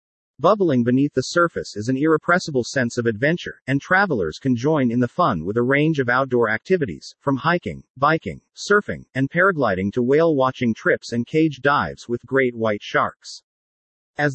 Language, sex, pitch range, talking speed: English, male, 120-160 Hz, 170 wpm